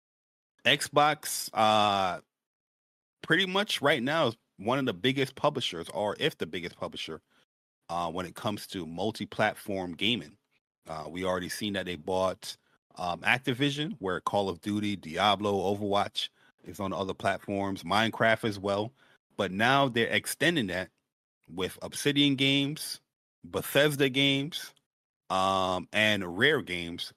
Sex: male